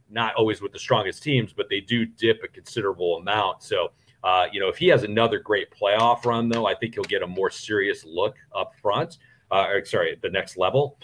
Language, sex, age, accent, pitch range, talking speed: English, male, 40-59, American, 105-145 Hz, 215 wpm